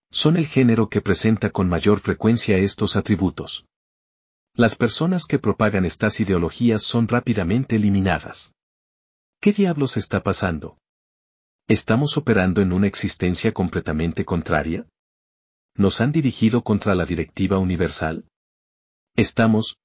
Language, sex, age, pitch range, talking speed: Spanish, male, 40-59, 90-115 Hz, 115 wpm